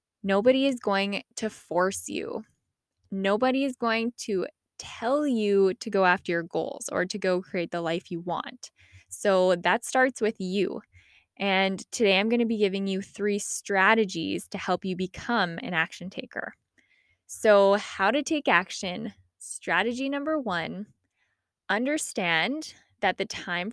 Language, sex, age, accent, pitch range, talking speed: English, female, 10-29, American, 180-220 Hz, 150 wpm